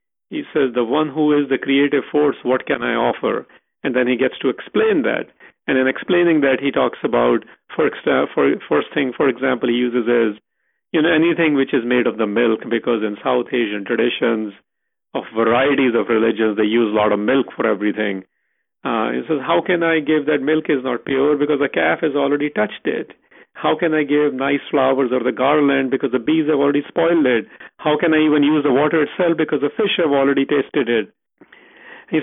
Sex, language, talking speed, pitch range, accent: male, English, 210 wpm, 120-155 Hz, Indian